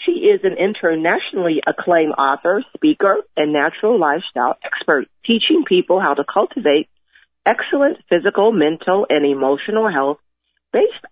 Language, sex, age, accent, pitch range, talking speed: English, female, 40-59, American, 160-205 Hz, 125 wpm